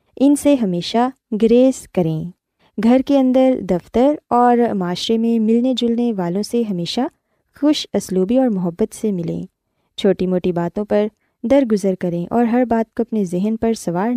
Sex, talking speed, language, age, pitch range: female, 160 wpm, Urdu, 20-39, 185-250 Hz